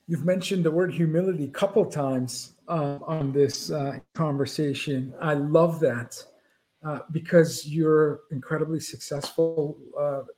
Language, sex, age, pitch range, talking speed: English, male, 50-69, 150-185 Hz, 135 wpm